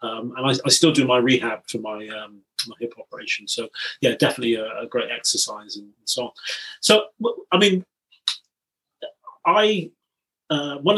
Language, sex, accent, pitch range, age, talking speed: English, male, British, 125-155 Hz, 30-49, 170 wpm